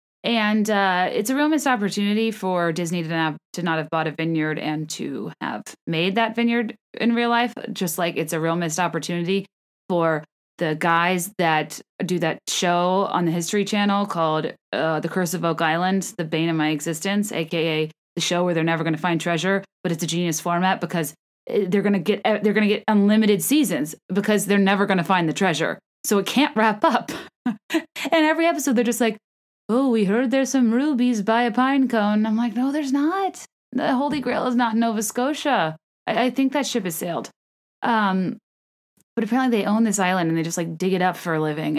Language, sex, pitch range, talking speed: English, female, 170-230 Hz, 210 wpm